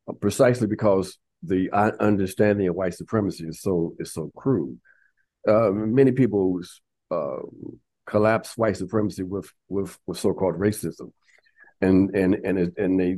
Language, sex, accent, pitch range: English, male, American, 95-110 Hz